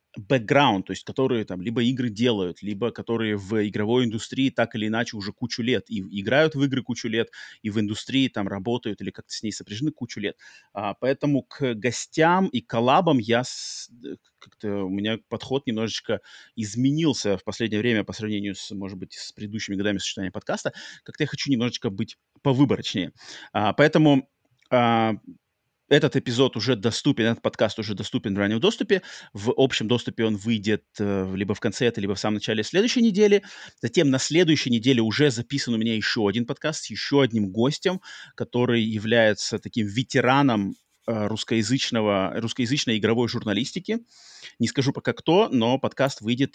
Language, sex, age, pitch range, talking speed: Russian, male, 30-49, 110-135 Hz, 165 wpm